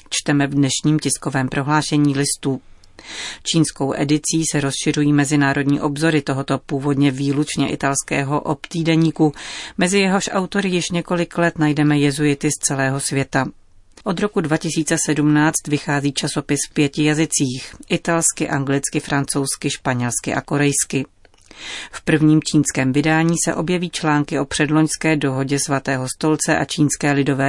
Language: Czech